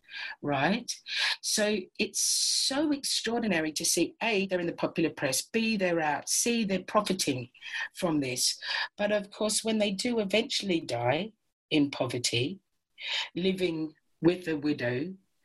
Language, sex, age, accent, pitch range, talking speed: English, female, 50-69, British, 145-190 Hz, 135 wpm